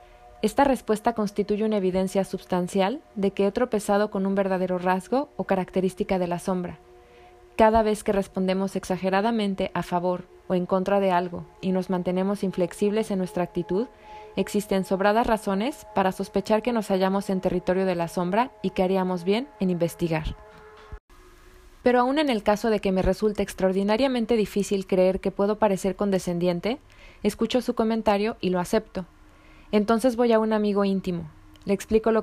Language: Spanish